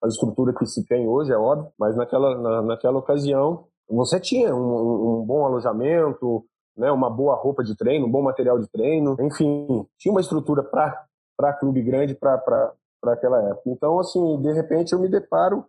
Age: 40-59